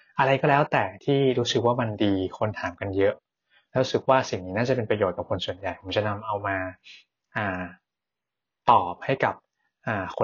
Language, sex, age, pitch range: Thai, male, 20-39, 100-130 Hz